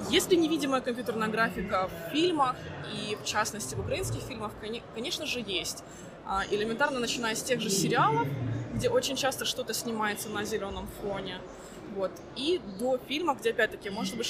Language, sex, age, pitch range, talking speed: Ukrainian, female, 20-39, 210-270 Hz, 155 wpm